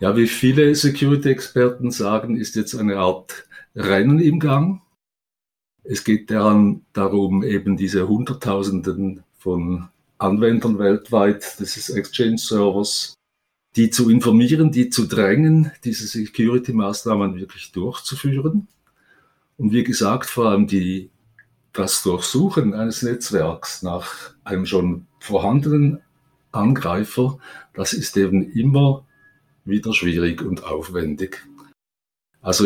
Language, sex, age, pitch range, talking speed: German, male, 50-69, 100-125 Hz, 105 wpm